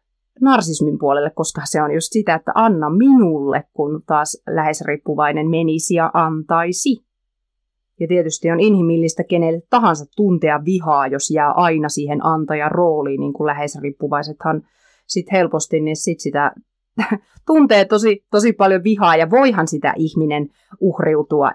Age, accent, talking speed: 30-49, native, 135 wpm